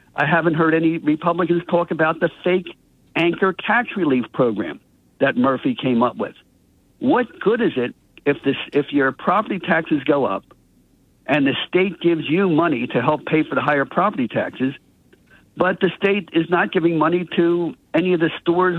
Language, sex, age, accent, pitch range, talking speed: English, male, 60-79, American, 140-175 Hz, 175 wpm